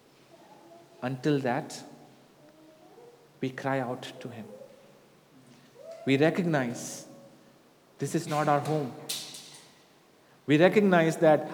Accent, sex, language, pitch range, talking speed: Indian, male, English, 150-195 Hz, 90 wpm